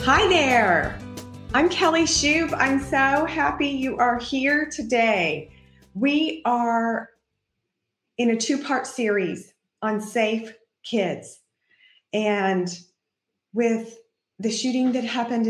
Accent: American